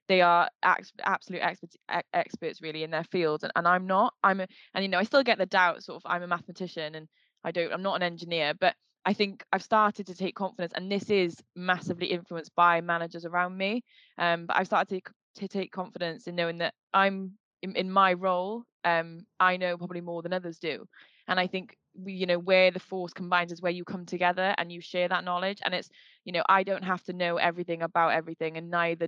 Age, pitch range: 20-39, 170-190 Hz